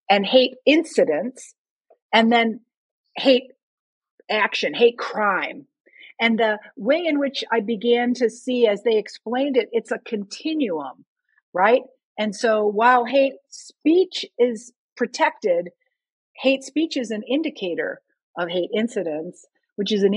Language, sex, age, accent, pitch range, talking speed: English, female, 50-69, American, 195-255 Hz, 130 wpm